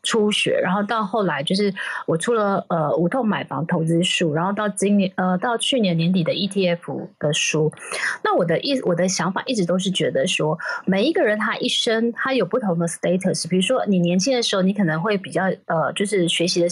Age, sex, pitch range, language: 30-49, female, 175-225 Hz, Chinese